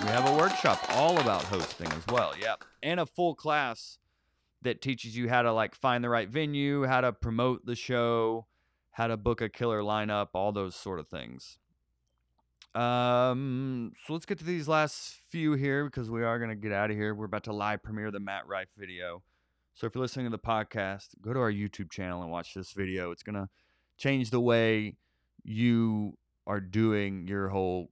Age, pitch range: 30-49, 95-140 Hz